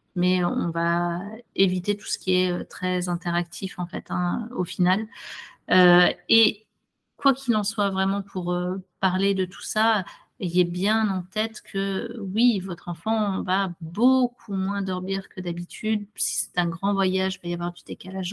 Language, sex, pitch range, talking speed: French, female, 180-210 Hz, 175 wpm